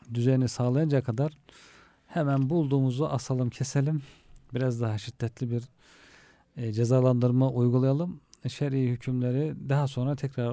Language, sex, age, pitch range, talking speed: Turkish, male, 40-59, 120-140 Hz, 110 wpm